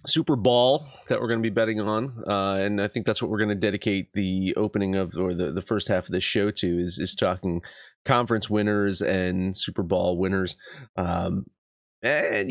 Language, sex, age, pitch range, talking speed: English, male, 30-49, 105-140 Hz, 200 wpm